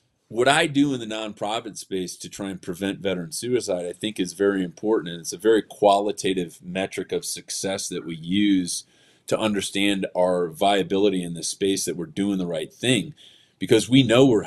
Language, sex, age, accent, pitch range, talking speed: English, male, 30-49, American, 95-125 Hz, 190 wpm